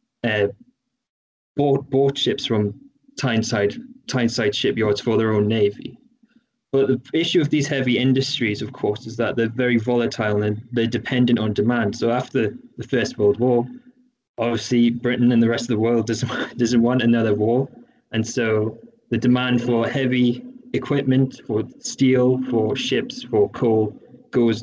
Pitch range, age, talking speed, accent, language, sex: 115-135 Hz, 20-39, 155 wpm, British, English, male